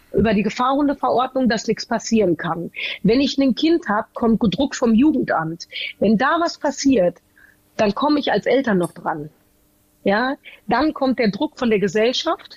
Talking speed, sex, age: 165 wpm, female, 40-59